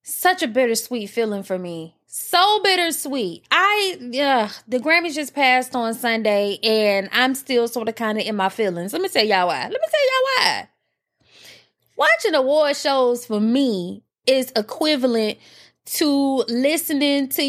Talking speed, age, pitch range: 160 wpm, 20-39, 220-295 Hz